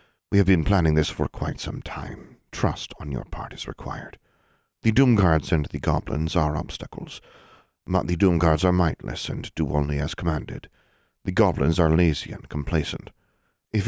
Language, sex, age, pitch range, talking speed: English, male, 40-59, 75-95 Hz, 170 wpm